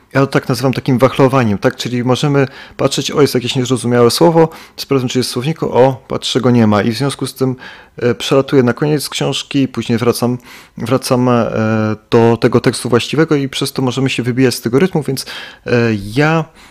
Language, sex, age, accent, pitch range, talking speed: Polish, male, 30-49, native, 115-135 Hz, 180 wpm